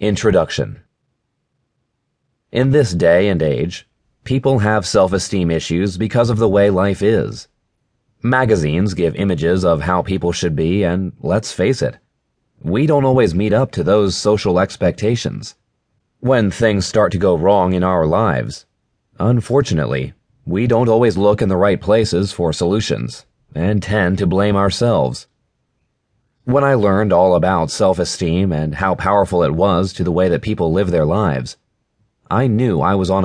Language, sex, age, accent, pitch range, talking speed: English, male, 30-49, American, 90-115 Hz, 155 wpm